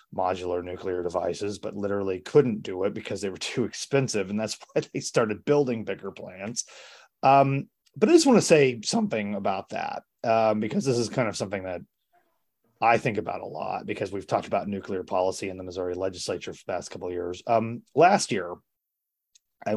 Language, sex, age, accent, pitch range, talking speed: English, male, 30-49, American, 95-130 Hz, 195 wpm